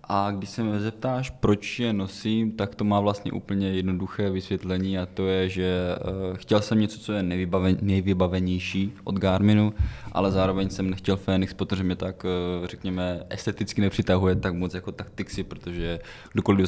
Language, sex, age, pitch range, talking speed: Czech, male, 20-39, 90-100 Hz, 160 wpm